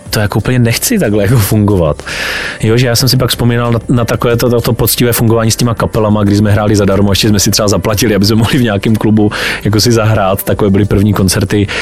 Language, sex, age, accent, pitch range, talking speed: Czech, male, 30-49, native, 105-120 Hz, 225 wpm